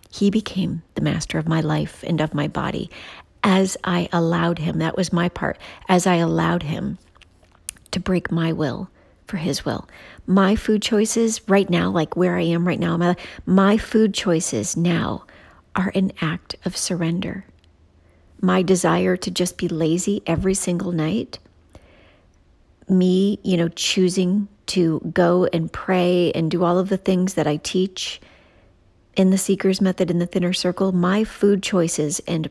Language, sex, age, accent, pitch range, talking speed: English, female, 40-59, American, 165-195 Hz, 165 wpm